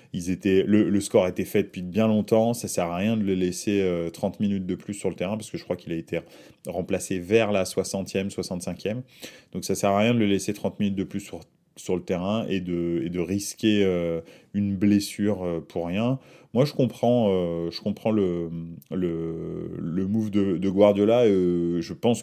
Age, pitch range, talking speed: 20-39, 90-105 Hz, 215 wpm